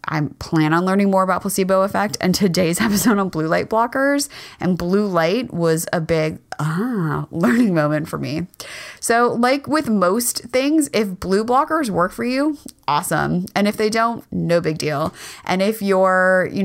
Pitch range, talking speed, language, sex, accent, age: 165-210 Hz, 175 wpm, English, female, American, 20-39